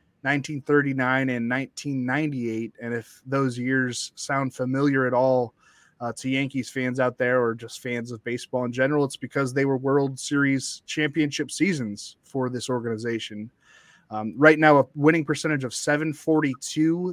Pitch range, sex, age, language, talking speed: 130-150 Hz, male, 20-39, English, 150 wpm